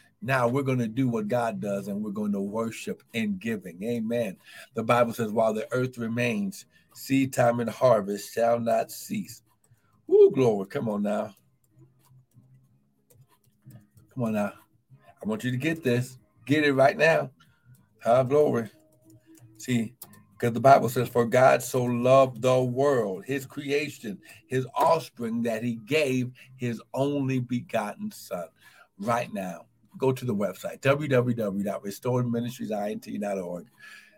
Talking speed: 140 wpm